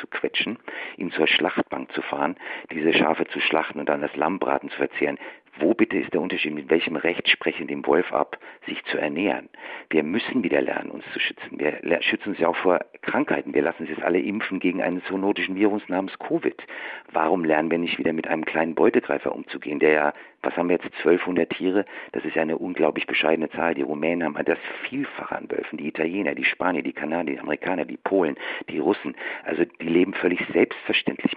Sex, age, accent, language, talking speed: male, 50-69, German, German, 205 wpm